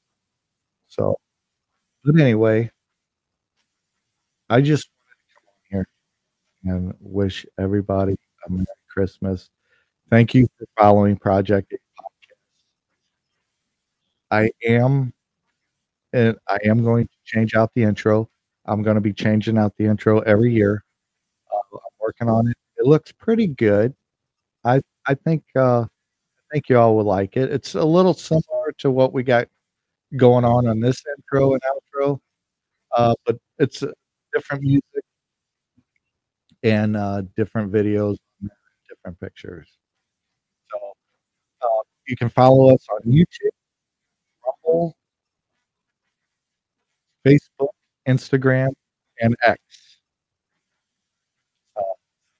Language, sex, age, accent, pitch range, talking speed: English, male, 50-69, American, 105-130 Hz, 120 wpm